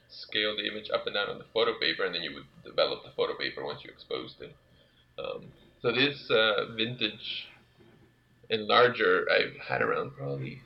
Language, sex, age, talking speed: English, male, 20-39, 180 wpm